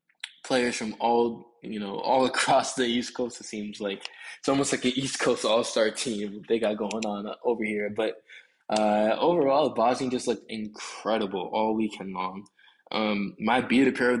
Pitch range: 105-115 Hz